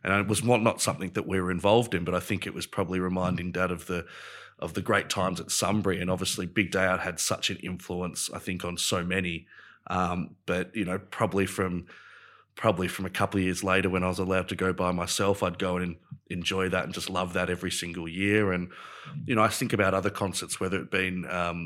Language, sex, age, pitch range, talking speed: English, male, 30-49, 90-100 Hz, 240 wpm